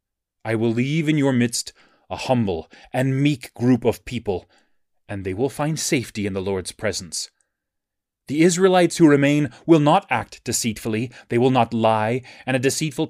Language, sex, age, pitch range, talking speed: English, male, 30-49, 115-170 Hz, 170 wpm